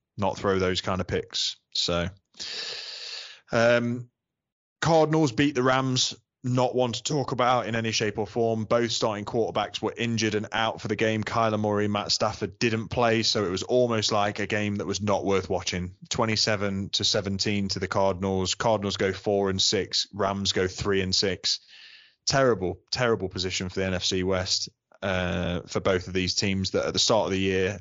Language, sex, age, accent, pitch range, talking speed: English, male, 20-39, British, 95-115 Hz, 185 wpm